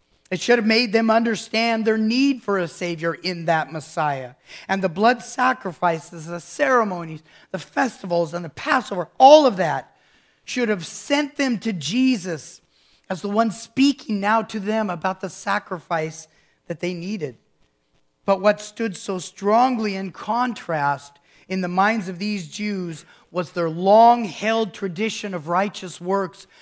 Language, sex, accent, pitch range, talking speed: English, male, American, 160-220 Hz, 150 wpm